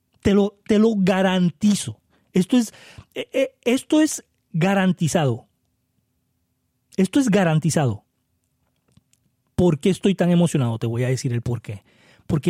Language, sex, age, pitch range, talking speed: Spanish, male, 30-49, 145-200 Hz, 115 wpm